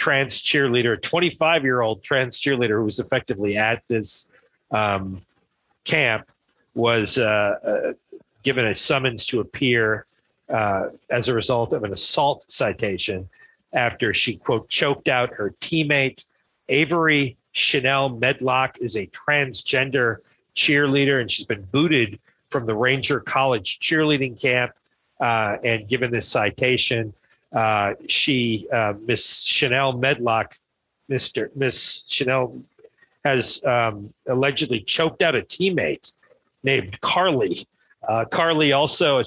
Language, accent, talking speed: English, American, 120 wpm